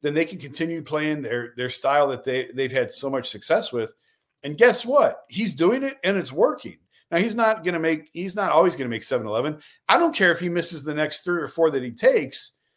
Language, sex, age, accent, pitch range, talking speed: English, male, 40-59, American, 140-200 Hz, 235 wpm